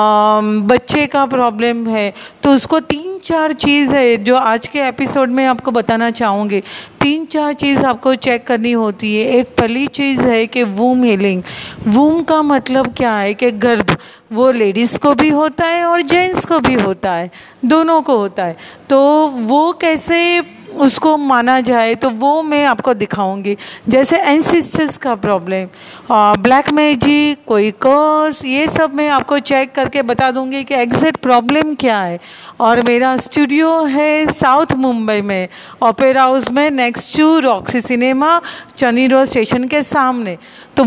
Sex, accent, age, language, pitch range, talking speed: female, native, 40-59, Hindi, 230-295 Hz, 160 wpm